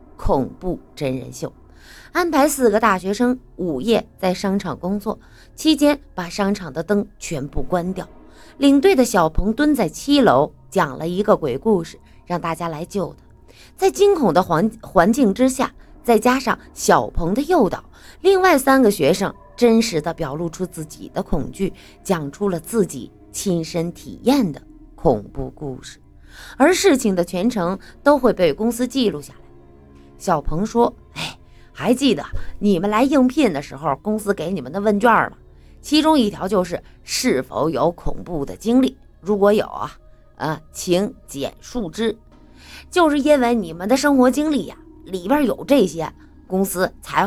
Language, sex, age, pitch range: Chinese, female, 20-39, 175-275 Hz